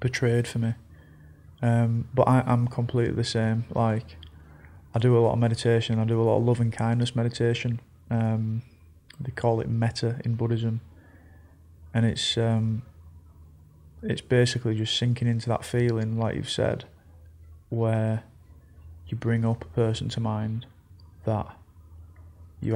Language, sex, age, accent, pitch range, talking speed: English, male, 30-49, British, 85-120 Hz, 150 wpm